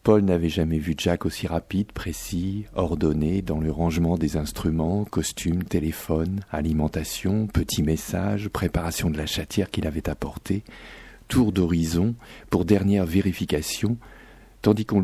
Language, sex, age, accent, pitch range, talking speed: French, male, 50-69, French, 85-110 Hz, 130 wpm